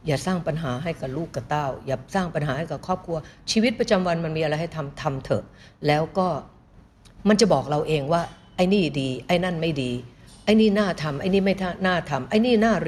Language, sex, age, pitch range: Thai, female, 60-79, 145-200 Hz